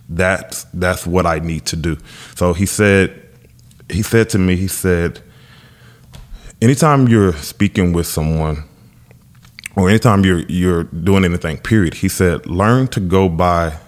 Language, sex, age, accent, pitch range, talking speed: English, male, 20-39, American, 85-115 Hz, 145 wpm